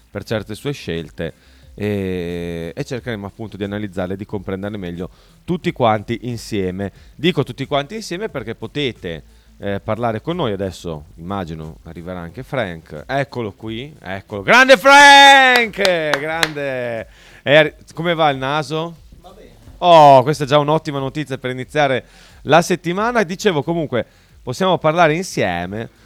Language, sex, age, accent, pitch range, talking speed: Italian, male, 30-49, native, 100-155 Hz, 135 wpm